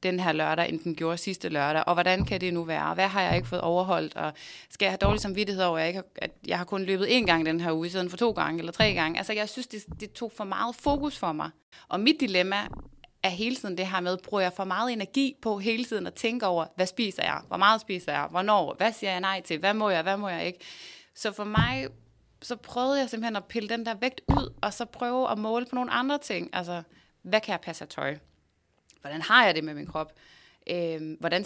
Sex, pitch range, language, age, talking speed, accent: female, 170-220 Hz, Danish, 30-49, 255 wpm, native